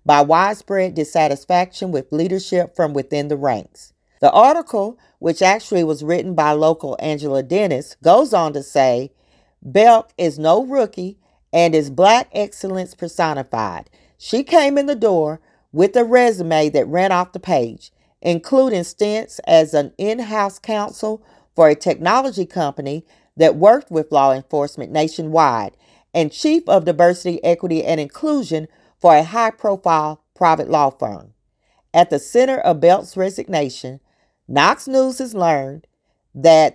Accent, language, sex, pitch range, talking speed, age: American, English, female, 155-205 Hz, 140 wpm, 40-59